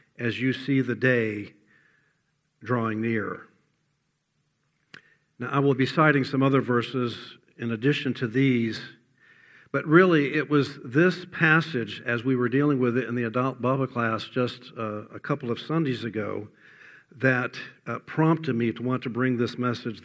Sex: male